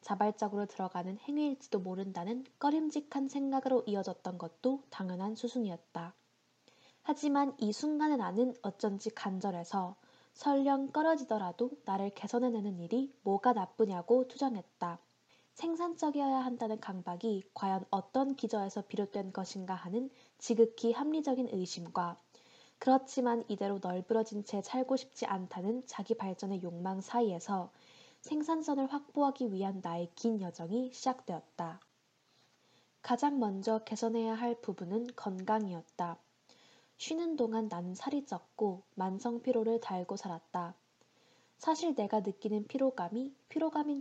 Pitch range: 190-260 Hz